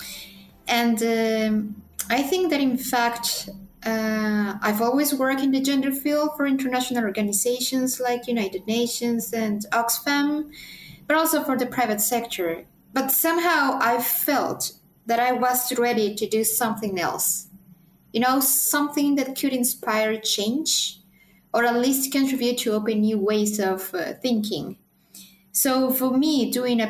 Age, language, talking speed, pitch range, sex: 20-39, English, 145 wpm, 195-250 Hz, female